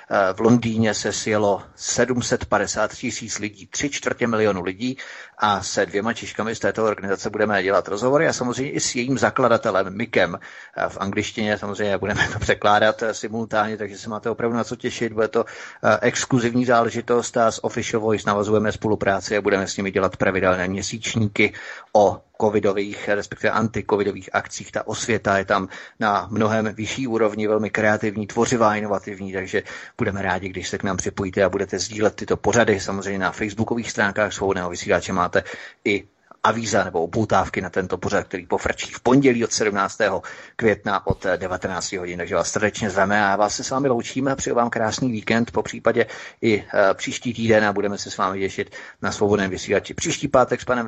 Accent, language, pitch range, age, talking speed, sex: native, Czech, 100-115 Hz, 30-49, 170 wpm, male